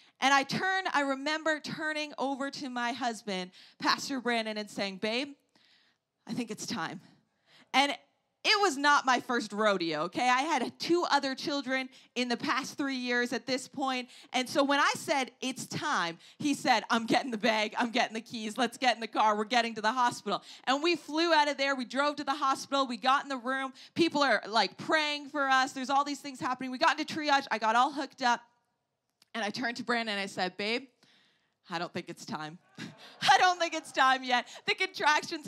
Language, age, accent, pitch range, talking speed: English, 30-49, American, 230-285 Hz, 210 wpm